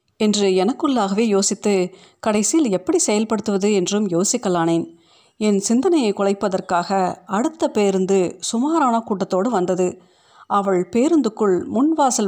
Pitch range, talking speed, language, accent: 185-225 Hz, 95 wpm, Tamil, native